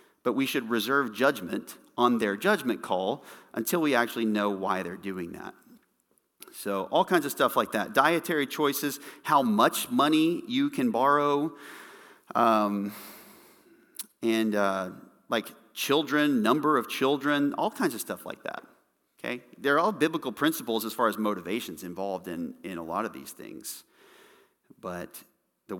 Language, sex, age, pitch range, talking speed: English, male, 40-59, 95-125 Hz, 150 wpm